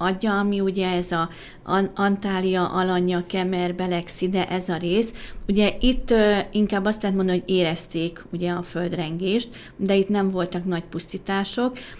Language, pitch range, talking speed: Hungarian, 175-205 Hz, 145 wpm